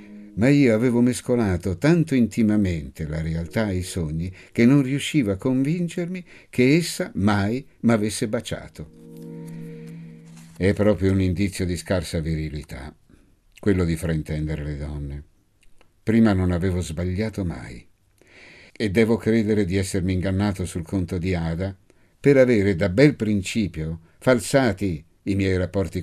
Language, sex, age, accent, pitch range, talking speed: Italian, male, 60-79, native, 85-115 Hz, 130 wpm